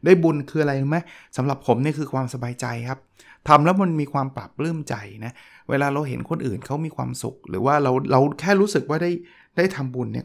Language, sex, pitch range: Thai, male, 120-155 Hz